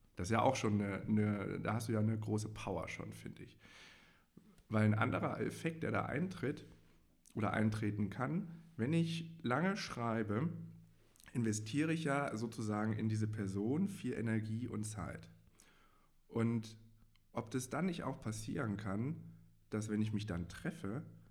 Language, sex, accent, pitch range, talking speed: German, male, German, 100-115 Hz, 160 wpm